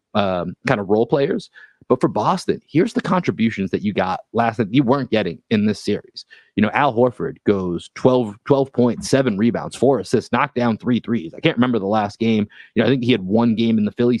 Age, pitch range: 30-49, 105-140 Hz